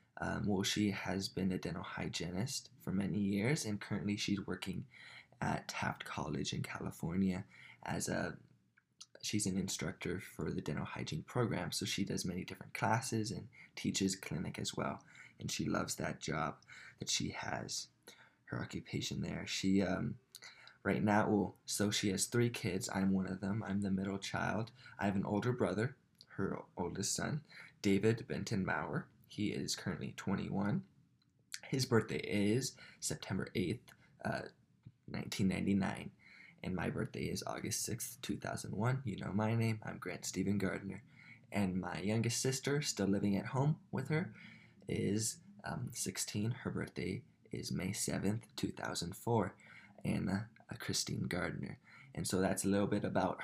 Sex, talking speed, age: male, 155 wpm, 20-39